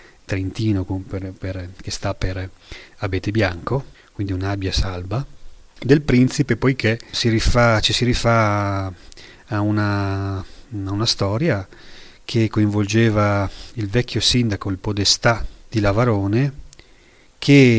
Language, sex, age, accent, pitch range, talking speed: Italian, male, 30-49, native, 100-115 Hz, 115 wpm